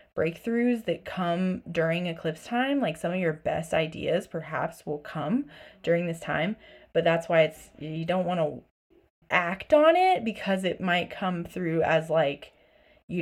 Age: 20-39